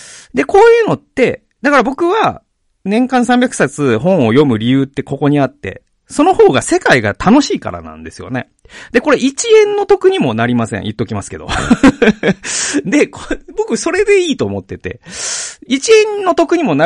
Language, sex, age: Japanese, male, 40-59